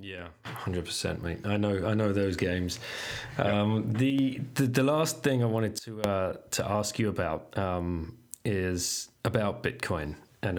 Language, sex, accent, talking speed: English, male, British, 165 wpm